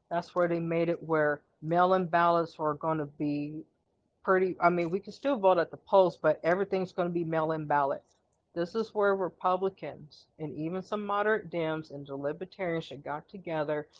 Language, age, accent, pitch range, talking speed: English, 50-69, American, 155-180 Hz, 190 wpm